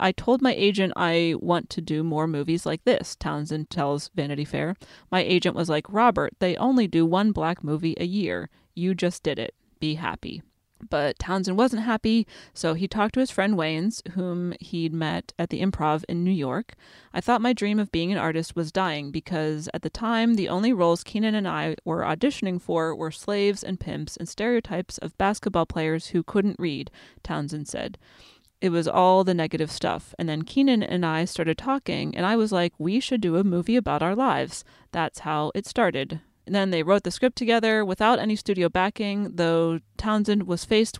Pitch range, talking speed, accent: 165-210 Hz, 200 wpm, American